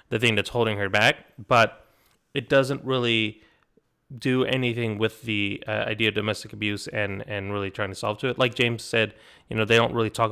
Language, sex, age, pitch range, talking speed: English, male, 30-49, 105-125 Hz, 210 wpm